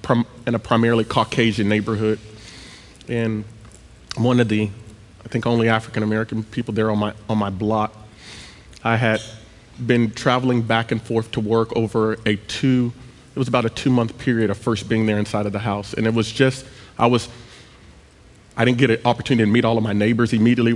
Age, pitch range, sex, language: 30-49, 110-120 Hz, male, English